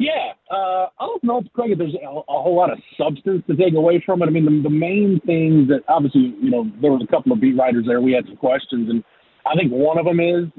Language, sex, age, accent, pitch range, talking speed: English, male, 40-59, American, 140-180 Hz, 270 wpm